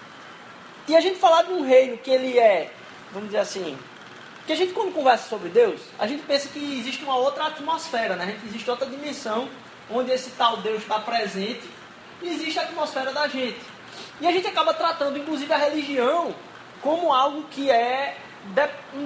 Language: Portuguese